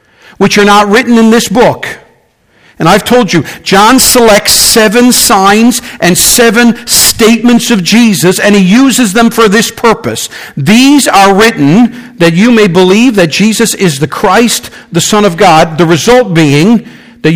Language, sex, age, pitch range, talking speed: English, male, 50-69, 180-230 Hz, 165 wpm